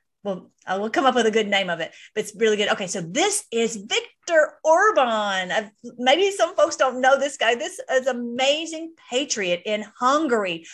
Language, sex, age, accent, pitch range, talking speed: English, female, 40-59, American, 195-255 Hz, 195 wpm